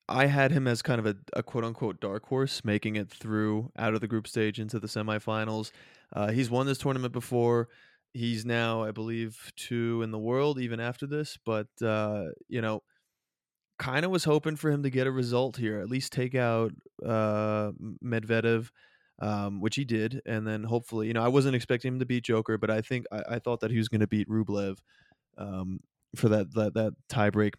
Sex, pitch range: male, 110-125 Hz